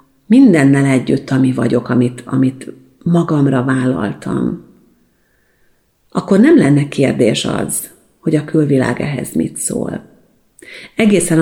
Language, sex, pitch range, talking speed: Hungarian, female, 135-175 Hz, 105 wpm